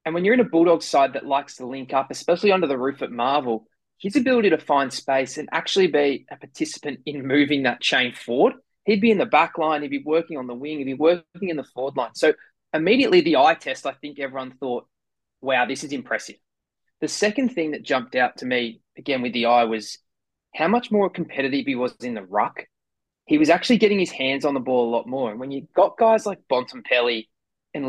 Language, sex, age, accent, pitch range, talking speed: English, male, 20-39, Australian, 135-205 Hz, 230 wpm